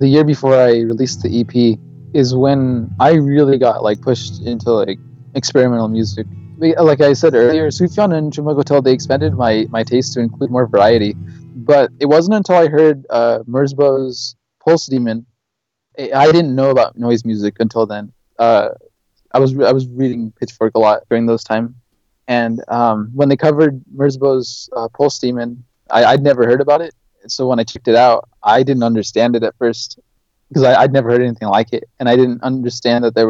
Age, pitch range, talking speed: 20-39, 115-135 Hz, 190 wpm